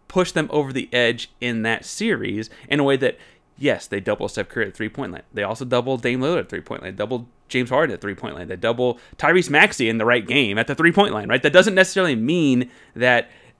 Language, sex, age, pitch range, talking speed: English, male, 30-49, 115-160 Hz, 245 wpm